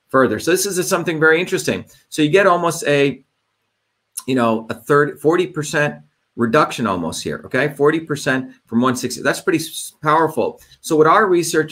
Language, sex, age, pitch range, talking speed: English, male, 40-59, 125-155 Hz, 155 wpm